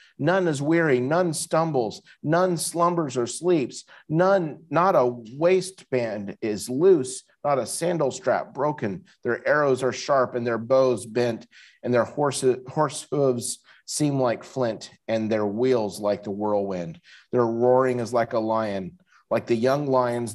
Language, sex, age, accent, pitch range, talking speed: English, male, 40-59, American, 110-145 Hz, 155 wpm